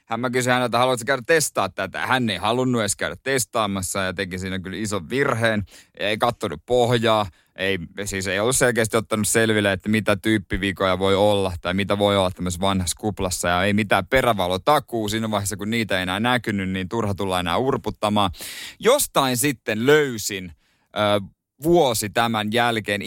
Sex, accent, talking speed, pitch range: male, native, 170 wpm, 100-130 Hz